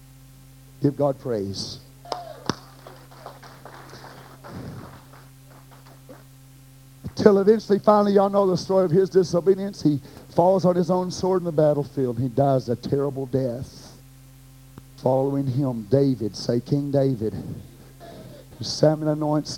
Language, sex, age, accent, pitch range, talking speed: English, male, 50-69, American, 130-170 Hz, 105 wpm